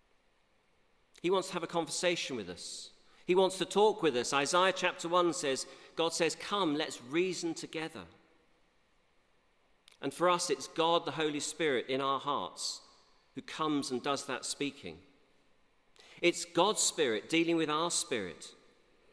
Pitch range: 135-170 Hz